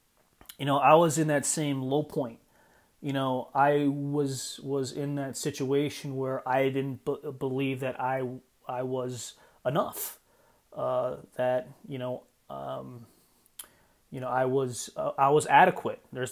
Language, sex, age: English, male, 30-49